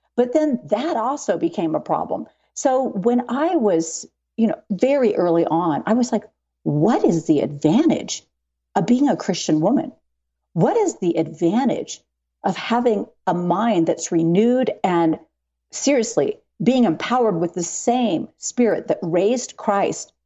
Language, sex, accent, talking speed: English, female, American, 145 wpm